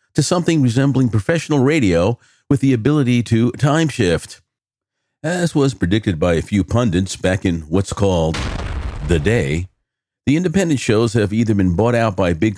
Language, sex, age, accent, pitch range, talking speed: English, male, 50-69, American, 95-140 Hz, 160 wpm